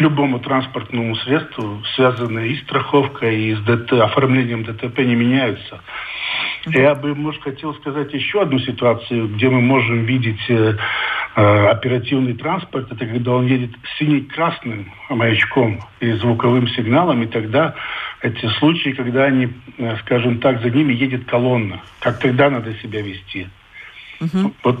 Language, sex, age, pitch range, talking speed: Russian, male, 60-79, 115-135 Hz, 135 wpm